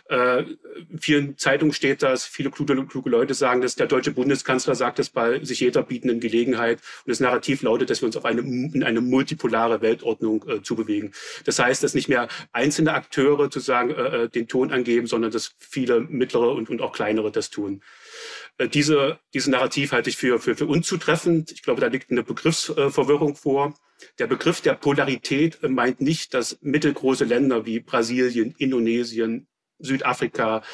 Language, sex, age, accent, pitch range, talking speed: German, male, 40-59, German, 120-155 Hz, 175 wpm